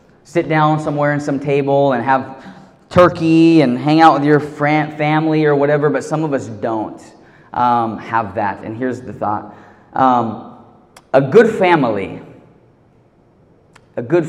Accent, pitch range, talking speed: American, 130-160 Hz, 145 wpm